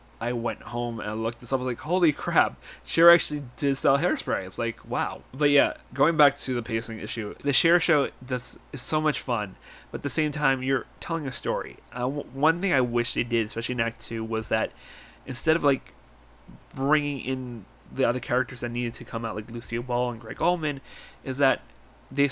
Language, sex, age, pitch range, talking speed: English, male, 30-49, 115-135 Hz, 220 wpm